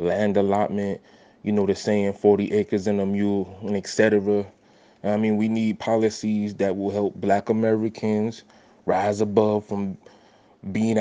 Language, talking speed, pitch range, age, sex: English, 155 wpm, 100-105 Hz, 20-39, male